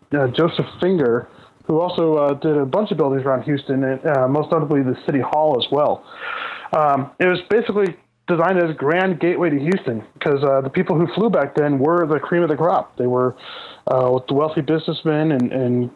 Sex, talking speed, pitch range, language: male, 210 wpm, 135-165 Hz, English